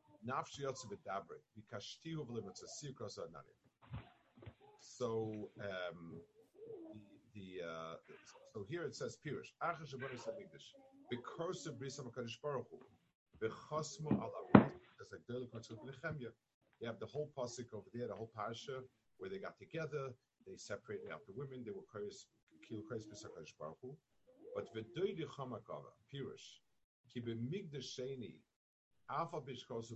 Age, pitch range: 50-69, 110-155 Hz